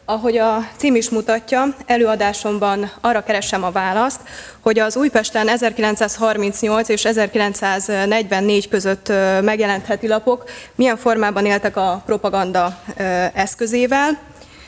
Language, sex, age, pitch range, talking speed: Hungarian, female, 20-39, 195-225 Hz, 100 wpm